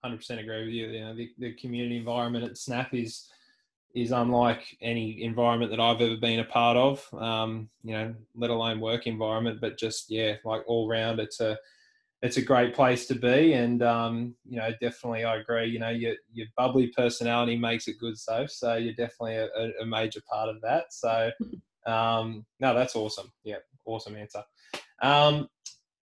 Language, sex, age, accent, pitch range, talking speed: English, male, 20-39, Australian, 110-125 Hz, 185 wpm